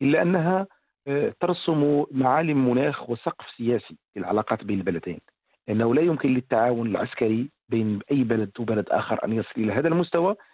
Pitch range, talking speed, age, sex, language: 125-175 Hz, 140 wpm, 50-69, male, English